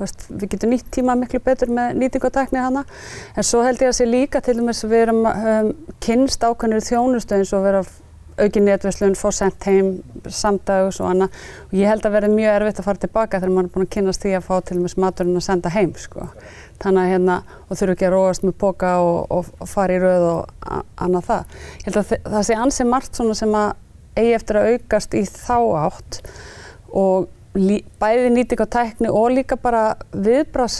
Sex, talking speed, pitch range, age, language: female, 210 wpm, 195-235 Hz, 30-49, English